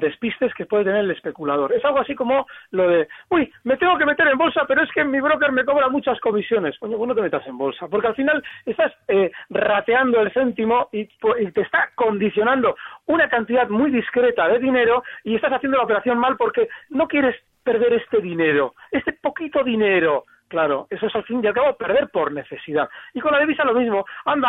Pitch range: 205-275 Hz